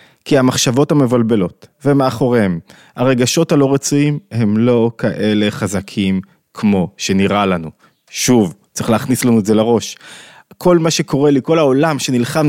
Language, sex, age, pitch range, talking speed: Hebrew, male, 20-39, 120-155 Hz, 135 wpm